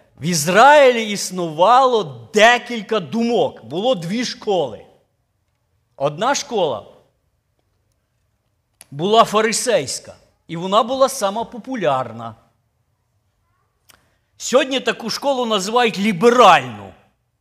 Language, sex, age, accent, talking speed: Ukrainian, male, 50-69, native, 75 wpm